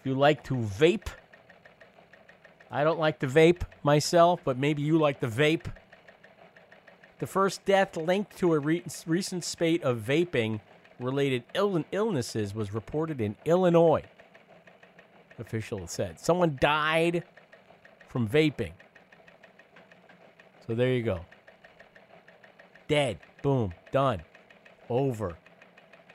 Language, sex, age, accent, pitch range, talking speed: English, male, 50-69, American, 115-170 Hz, 105 wpm